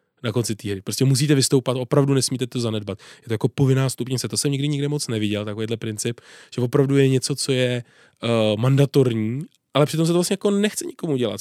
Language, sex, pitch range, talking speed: Czech, male, 115-140 Hz, 210 wpm